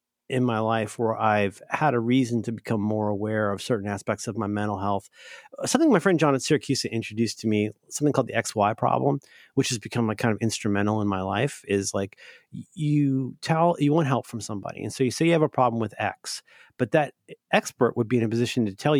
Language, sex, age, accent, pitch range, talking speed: English, male, 40-59, American, 105-140 Hz, 230 wpm